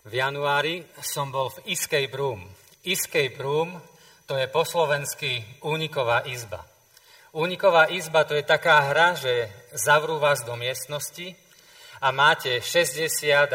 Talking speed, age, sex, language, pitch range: 130 wpm, 40-59, male, Slovak, 140-195 Hz